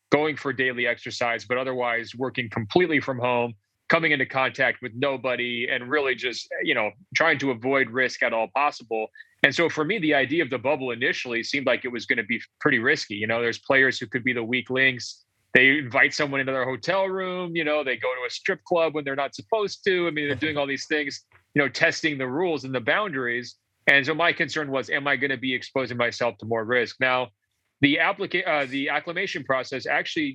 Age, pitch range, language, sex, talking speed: 30-49, 125-145 Hz, English, male, 225 wpm